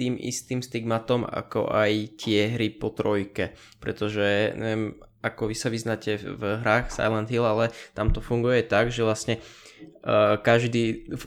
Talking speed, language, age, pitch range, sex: 155 wpm, Czech, 20-39, 110-120 Hz, male